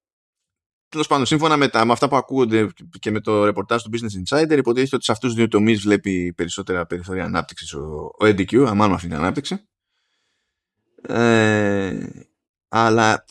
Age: 20-39